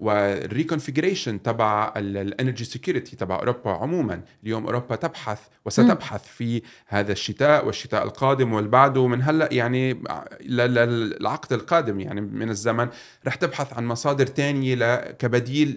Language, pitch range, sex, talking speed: Arabic, 105-130 Hz, male, 120 wpm